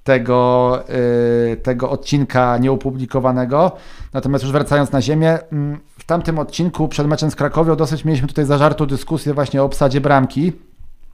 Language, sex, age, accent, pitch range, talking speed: Polish, male, 40-59, native, 135-165 Hz, 140 wpm